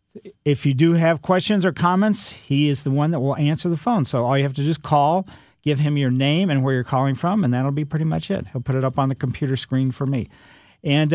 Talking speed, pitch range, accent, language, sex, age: 270 wpm, 130-170 Hz, American, English, male, 50-69